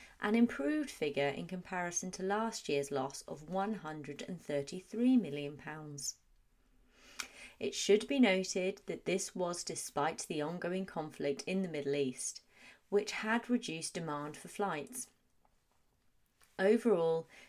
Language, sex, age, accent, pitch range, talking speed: English, female, 30-49, British, 155-220 Hz, 115 wpm